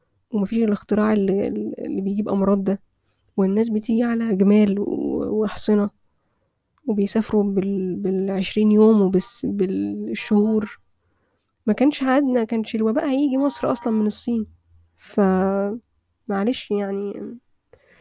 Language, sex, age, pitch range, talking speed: Arabic, female, 10-29, 195-220 Hz, 105 wpm